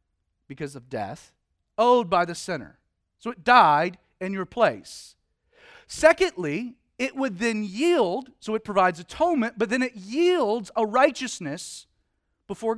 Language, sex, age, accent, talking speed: English, male, 40-59, American, 135 wpm